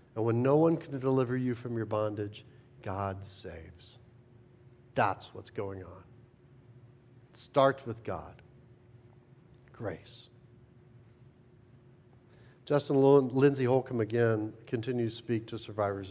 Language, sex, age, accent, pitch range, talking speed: English, male, 50-69, American, 110-130 Hz, 110 wpm